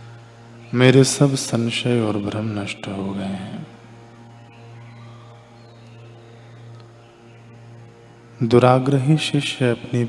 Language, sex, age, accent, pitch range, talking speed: Hindi, male, 20-39, native, 110-115 Hz, 70 wpm